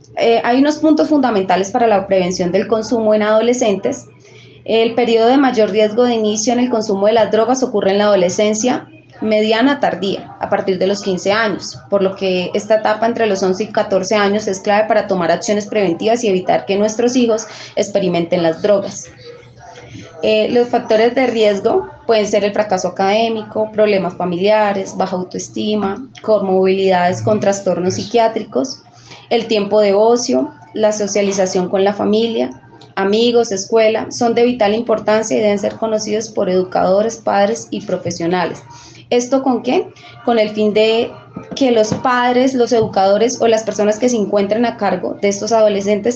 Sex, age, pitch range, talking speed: female, 20-39, 195-230 Hz, 165 wpm